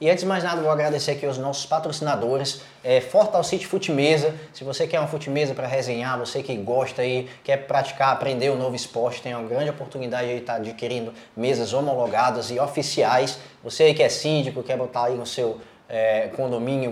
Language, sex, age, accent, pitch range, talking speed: Portuguese, male, 20-39, Brazilian, 130-160 Hz, 200 wpm